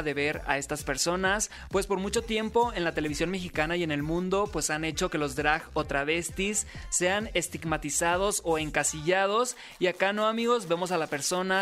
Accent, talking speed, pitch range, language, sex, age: Mexican, 190 wpm, 160-205 Hz, Spanish, male, 20-39